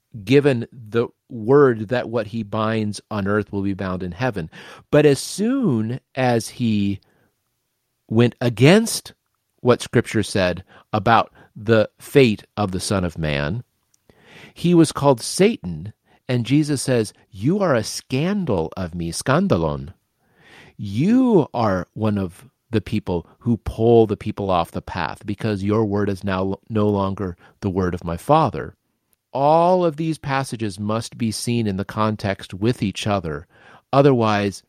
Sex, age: male, 40-59